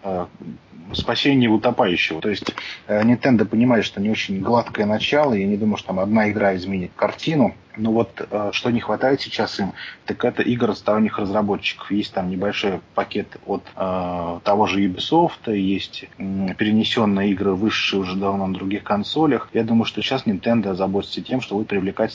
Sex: male